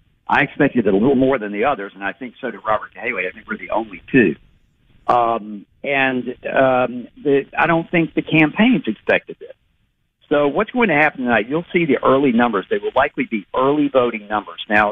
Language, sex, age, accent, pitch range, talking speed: English, male, 50-69, American, 110-150 Hz, 210 wpm